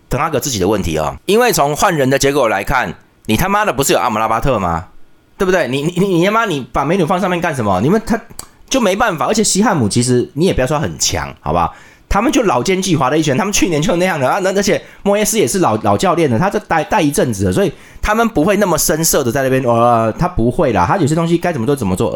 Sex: male